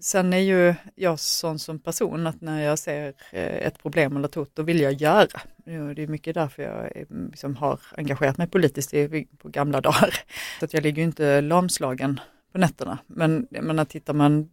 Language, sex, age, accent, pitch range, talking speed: Swedish, female, 30-49, native, 140-165 Hz, 185 wpm